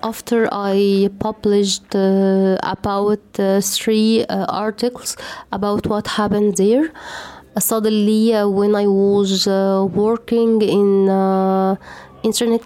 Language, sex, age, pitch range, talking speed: English, female, 20-39, 195-225 Hz, 115 wpm